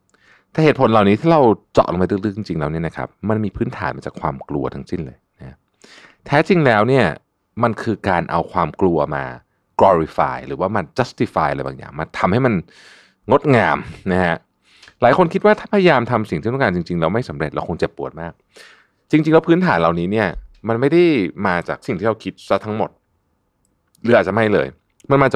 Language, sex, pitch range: Thai, male, 85-125 Hz